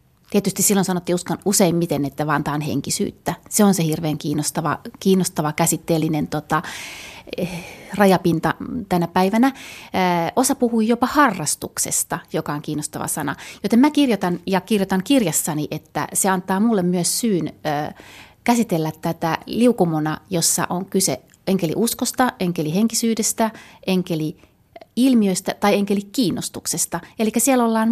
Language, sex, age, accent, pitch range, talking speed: Finnish, female, 30-49, native, 160-205 Hz, 140 wpm